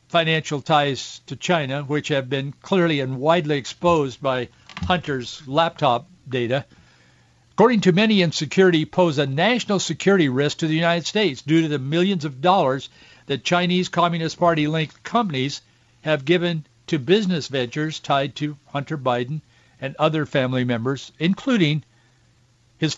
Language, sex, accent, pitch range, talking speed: English, male, American, 125-175 Hz, 145 wpm